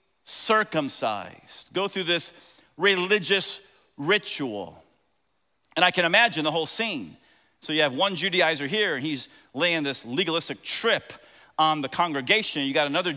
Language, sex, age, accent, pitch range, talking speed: English, male, 40-59, American, 140-215 Hz, 140 wpm